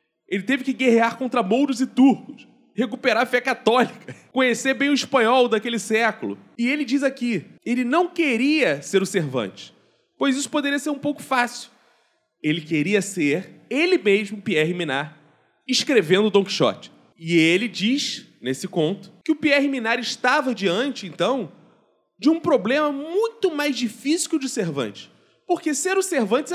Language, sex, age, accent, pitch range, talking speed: Portuguese, male, 20-39, Brazilian, 195-275 Hz, 160 wpm